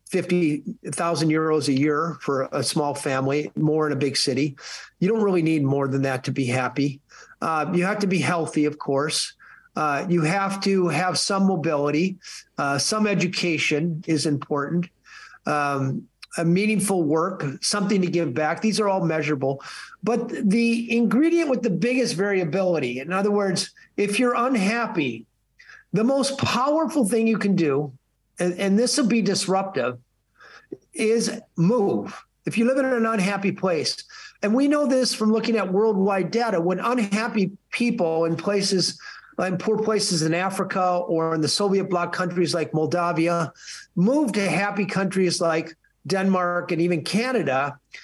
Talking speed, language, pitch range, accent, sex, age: 155 wpm, English, 160-215 Hz, American, male, 50-69